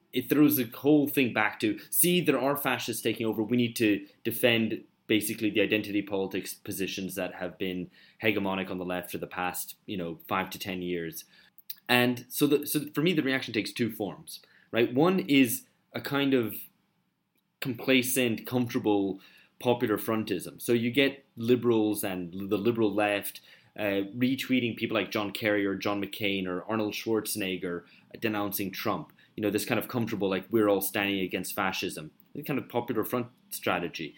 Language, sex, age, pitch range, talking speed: English, male, 20-39, 95-120 Hz, 175 wpm